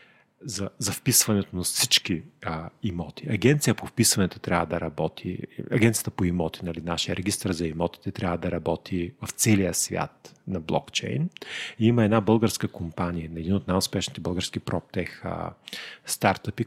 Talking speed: 145 wpm